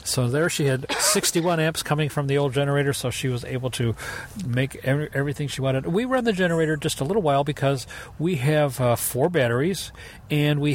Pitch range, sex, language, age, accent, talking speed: 115-145 Hz, male, English, 40-59, American, 200 wpm